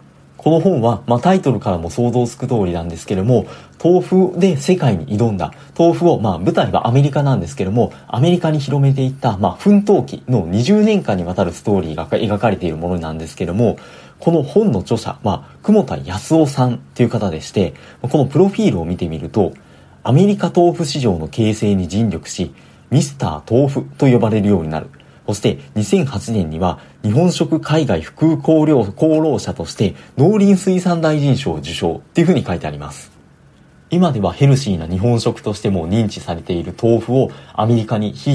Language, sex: Japanese, male